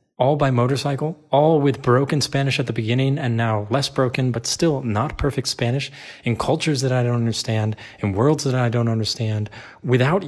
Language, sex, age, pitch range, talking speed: English, male, 30-49, 110-135 Hz, 185 wpm